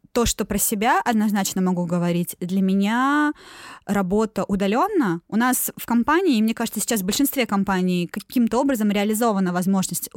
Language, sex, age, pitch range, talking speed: Russian, female, 20-39, 190-235 Hz, 155 wpm